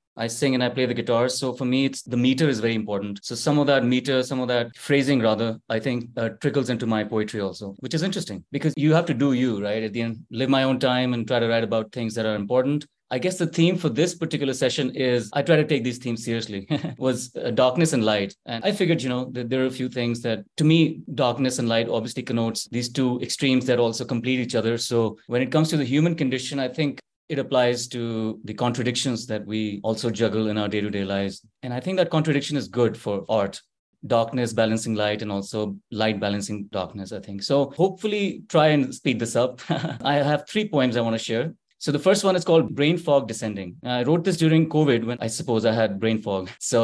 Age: 30-49